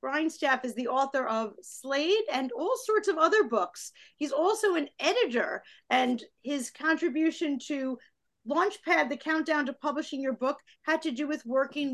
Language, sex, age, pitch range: English, female, 40-59, 260-340 Hz